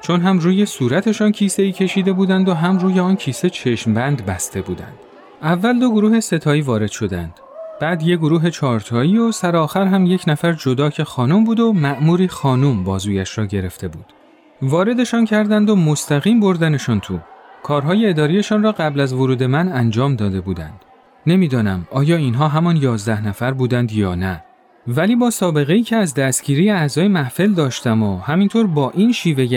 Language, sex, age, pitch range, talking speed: Persian, male, 30-49, 125-190 Hz, 170 wpm